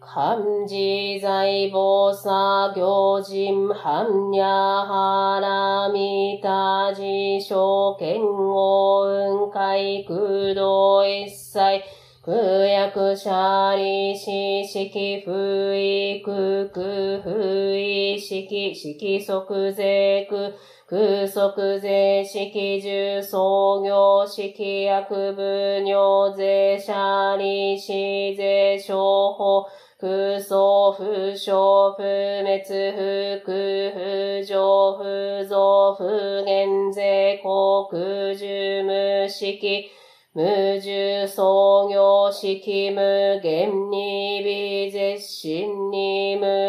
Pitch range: 195-200 Hz